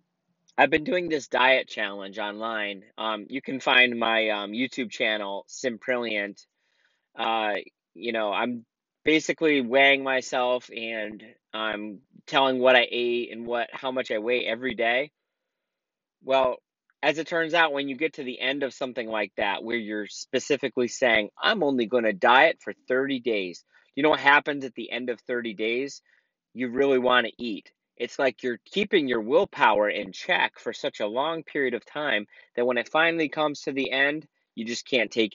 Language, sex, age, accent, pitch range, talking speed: English, male, 30-49, American, 110-140 Hz, 180 wpm